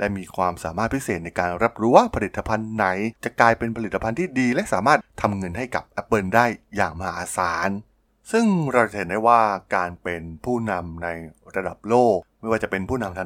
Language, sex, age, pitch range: Thai, male, 20-39, 90-120 Hz